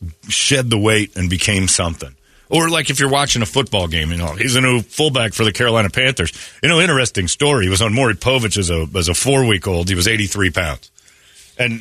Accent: American